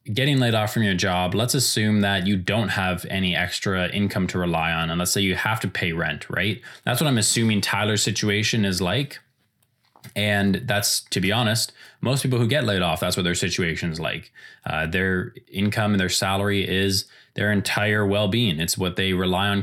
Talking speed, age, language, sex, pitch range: 205 wpm, 20-39, English, male, 95-115 Hz